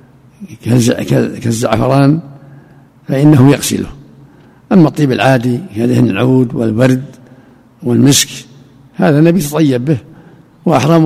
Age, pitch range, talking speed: 60-79, 125-150 Hz, 80 wpm